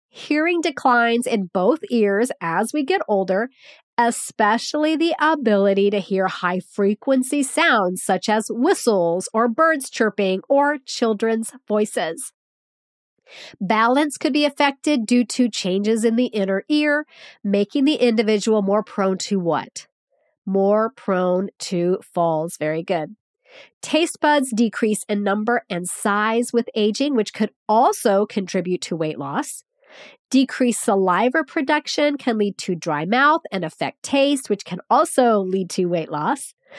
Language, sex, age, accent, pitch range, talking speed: English, female, 40-59, American, 195-275 Hz, 135 wpm